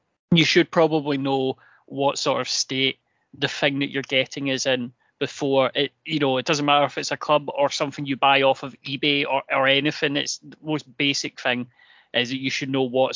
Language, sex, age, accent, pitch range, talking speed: English, male, 20-39, British, 130-150 Hz, 215 wpm